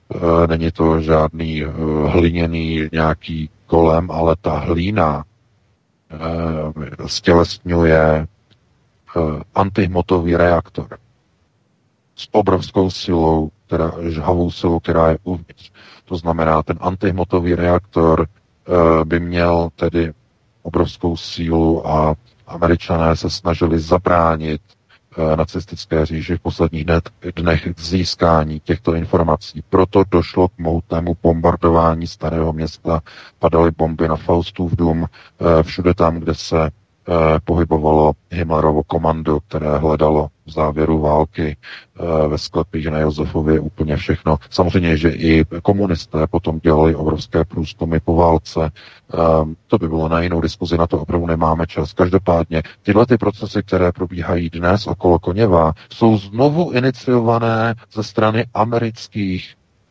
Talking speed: 110 wpm